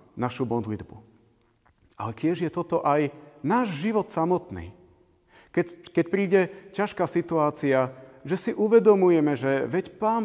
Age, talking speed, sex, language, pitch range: 40-59, 125 wpm, male, Slovak, 115-155 Hz